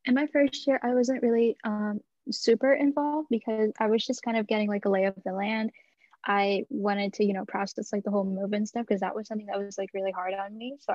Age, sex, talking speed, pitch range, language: 10-29, female, 260 wpm, 205-245 Hz, English